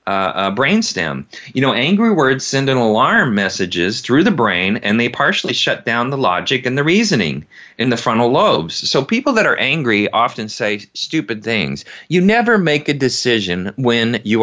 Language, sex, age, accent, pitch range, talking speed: English, male, 30-49, American, 110-140 Hz, 185 wpm